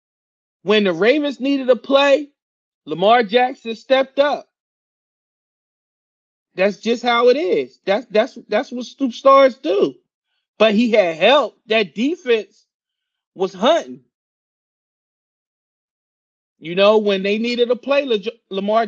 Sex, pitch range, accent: male, 185-265 Hz, American